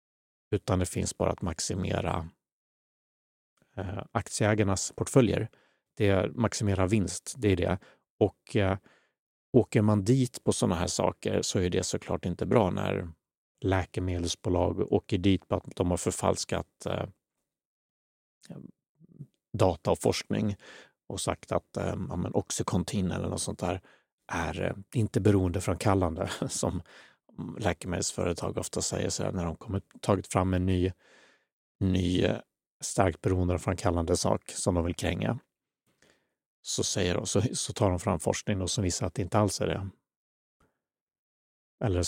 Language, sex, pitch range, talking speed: Swedish, male, 90-105 Hz, 145 wpm